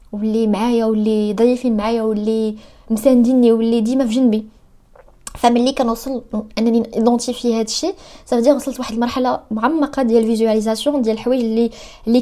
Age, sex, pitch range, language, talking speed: 20-39, female, 215-270 Hz, Arabic, 140 wpm